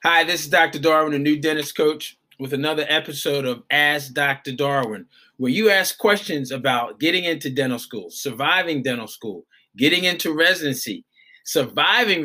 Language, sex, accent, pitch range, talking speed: English, male, American, 135-165 Hz, 155 wpm